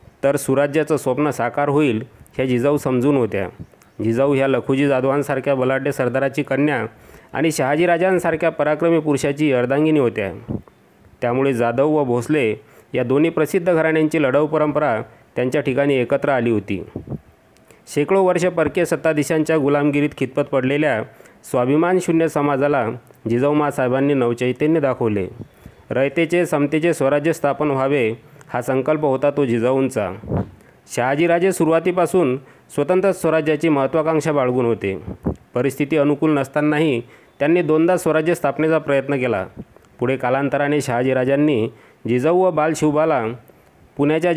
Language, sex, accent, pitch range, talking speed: Marathi, male, native, 130-155 Hz, 110 wpm